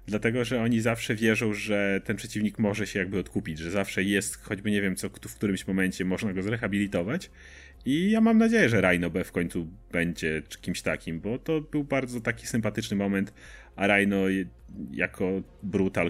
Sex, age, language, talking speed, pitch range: male, 30-49, Polish, 180 wpm, 90-110 Hz